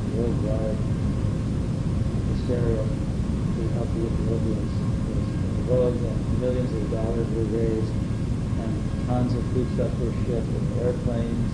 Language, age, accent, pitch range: English, 40-59, American, 110-130 Hz